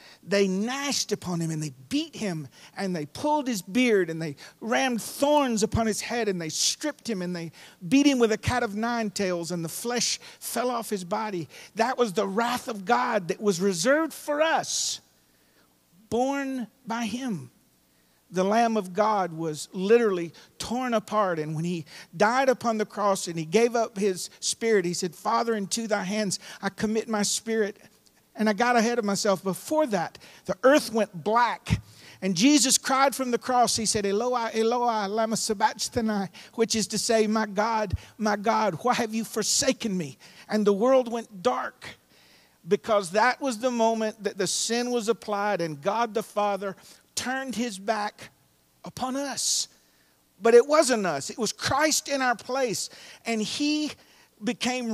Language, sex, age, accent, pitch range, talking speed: English, male, 50-69, American, 195-240 Hz, 175 wpm